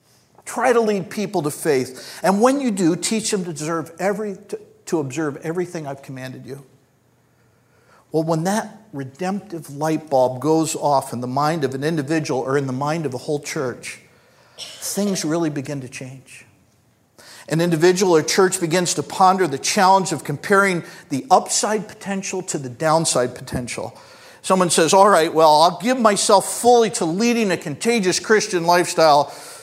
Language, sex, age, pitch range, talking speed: English, male, 50-69, 135-190 Hz, 160 wpm